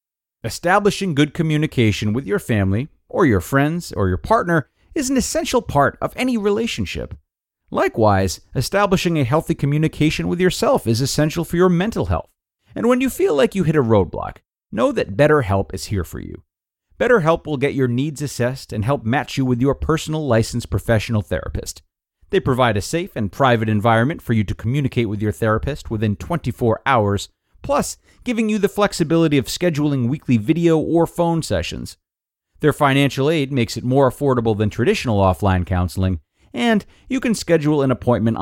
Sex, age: male, 40-59